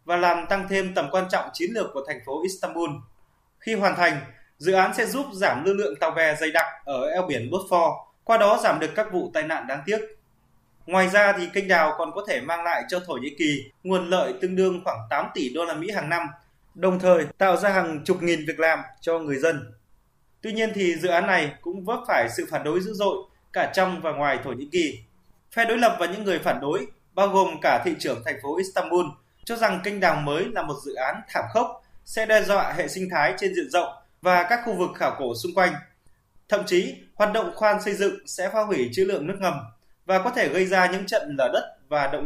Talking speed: 240 wpm